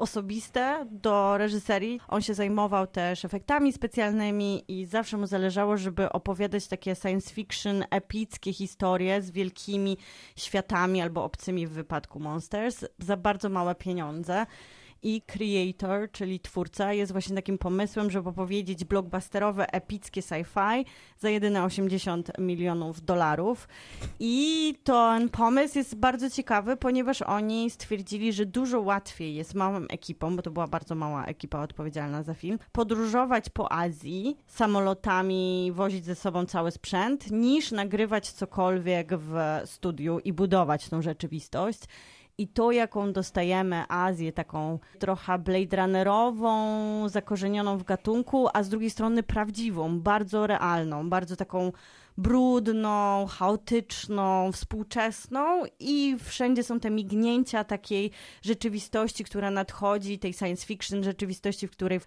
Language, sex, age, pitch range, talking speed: Polish, female, 30-49, 185-215 Hz, 125 wpm